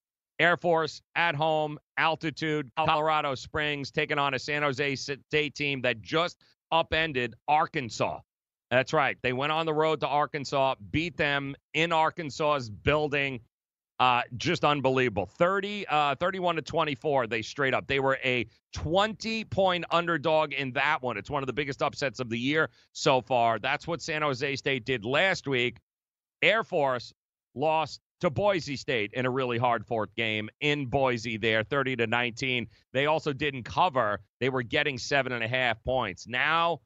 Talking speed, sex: 160 wpm, male